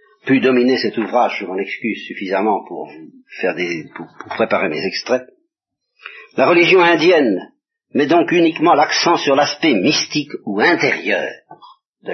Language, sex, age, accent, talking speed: French, male, 50-69, French, 145 wpm